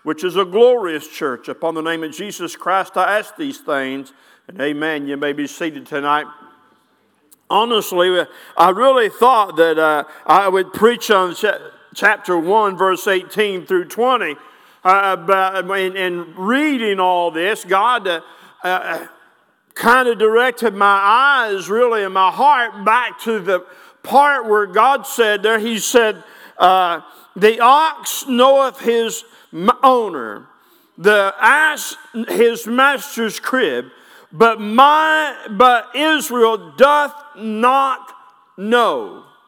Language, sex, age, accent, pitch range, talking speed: English, male, 50-69, American, 185-265 Hz, 125 wpm